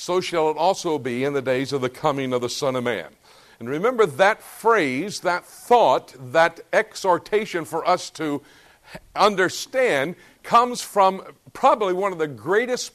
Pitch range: 170-210 Hz